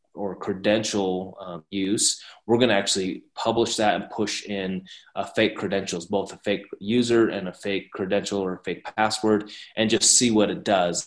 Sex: male